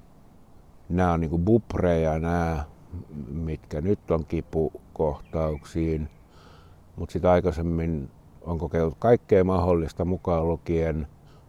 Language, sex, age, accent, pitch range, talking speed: Finnish, male, 60-79, native, 80-100 Hz, 95 wpm